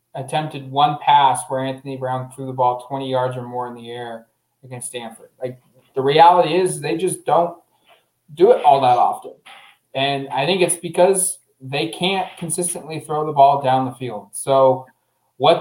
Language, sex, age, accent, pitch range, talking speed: English, male, 20-39, American, 135-180 Hz, 175 wpm